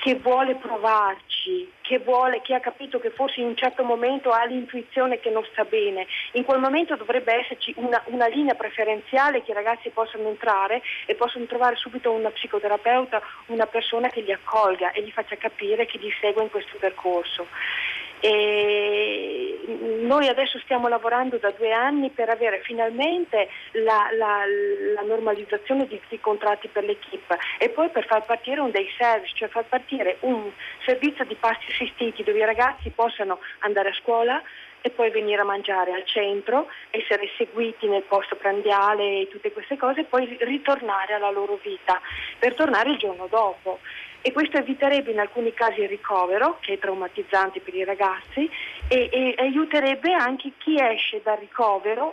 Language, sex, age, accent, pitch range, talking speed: Italian, female, 40-59, native, 205-255 Hz, 170 wpm